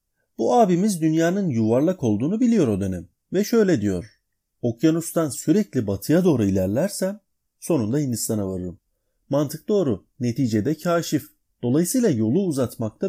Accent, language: native, Turkish